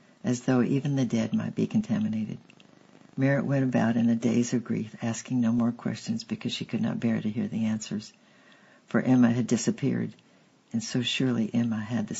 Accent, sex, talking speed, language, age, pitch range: American, female, 190 wpm, English, 60-79, 115-150 Hz